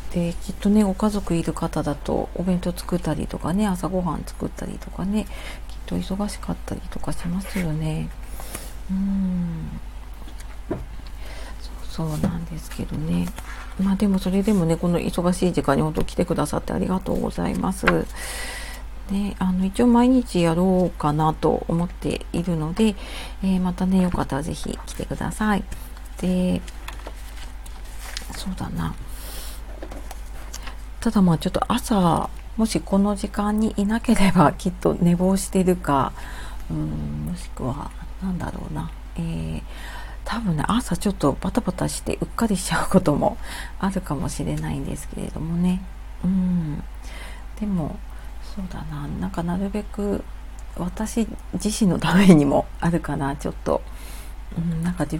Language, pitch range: Japanese, 145-195 Hz